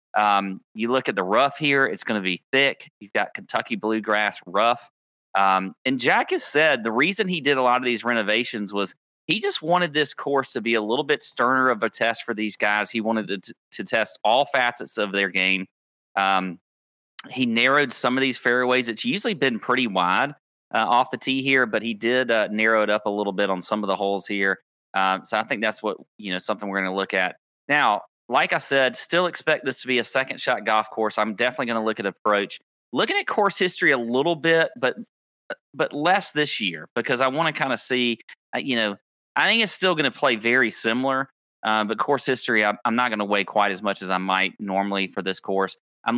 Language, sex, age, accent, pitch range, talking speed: English, male, 30-49, American, 100-130 Hz, 230 wpm